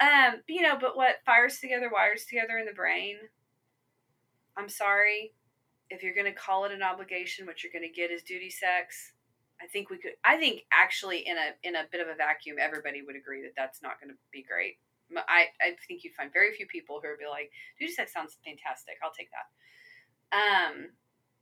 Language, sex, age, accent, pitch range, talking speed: English, female, 30-49, American, 155-205 Hz, 210 wpm